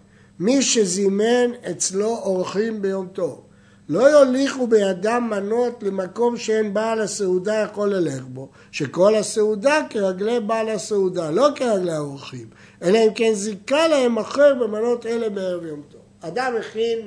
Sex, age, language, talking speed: male, 60-79, Hebrew, 135 wpm